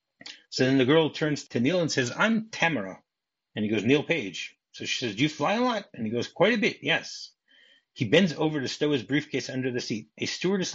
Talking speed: 240 wpm